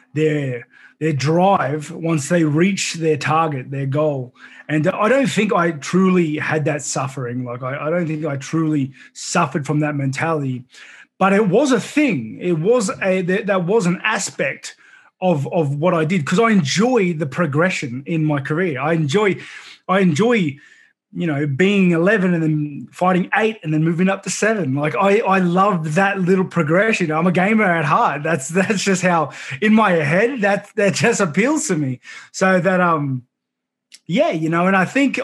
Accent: Australian